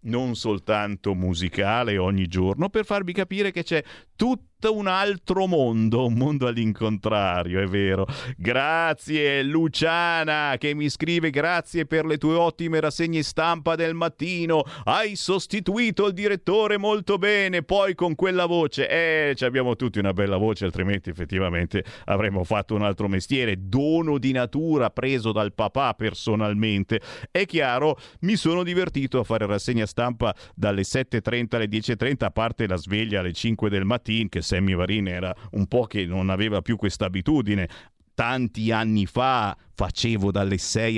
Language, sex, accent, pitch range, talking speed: Italian, male, native, 100-155 Hz, 150 wpm